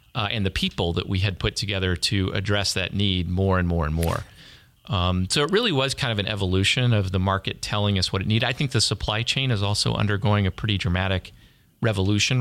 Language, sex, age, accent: English, male, 40-59, American